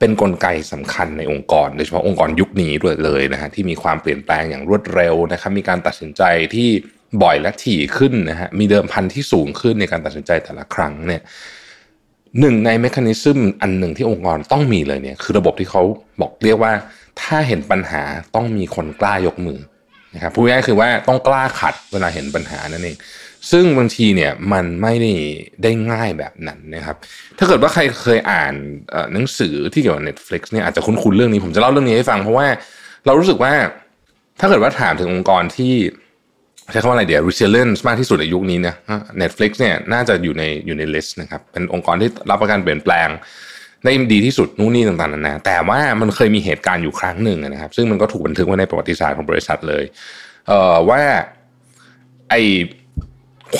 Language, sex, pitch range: Thai, male, 85-120 Hz